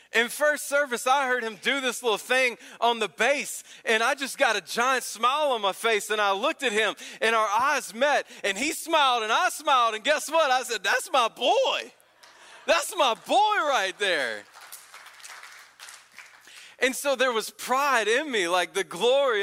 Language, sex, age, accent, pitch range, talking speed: English, male, 20-39, American, 195-255 Hz, 190 wpm